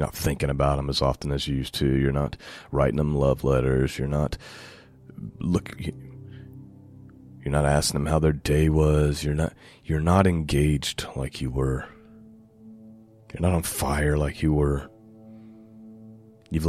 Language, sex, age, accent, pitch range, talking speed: English, male, 30-49, American, 80-110 Hz, 155 wpm